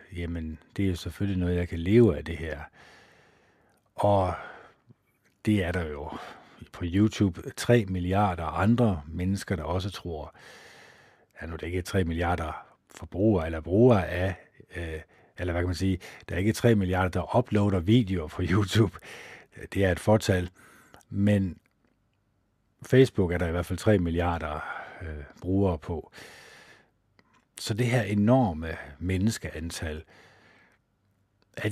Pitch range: 85-105 Hz